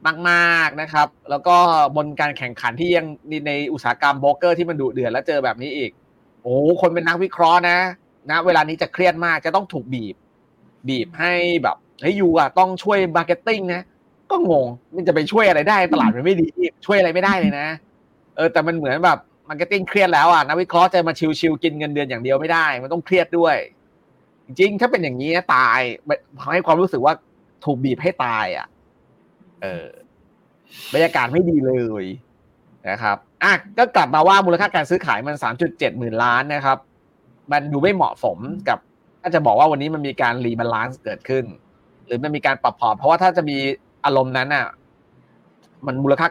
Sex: male